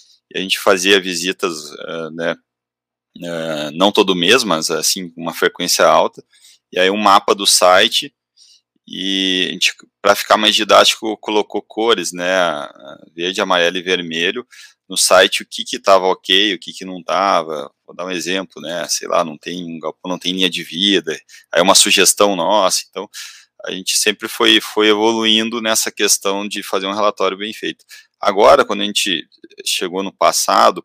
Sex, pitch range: male, 90-120 Hz